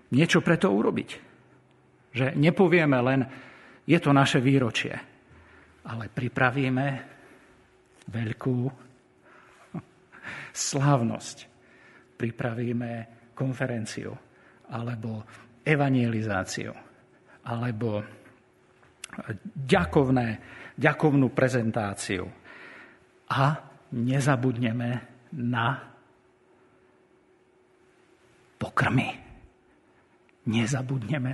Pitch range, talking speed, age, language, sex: 120-140 Hz, 55 wpm, 50-69, Slovak, male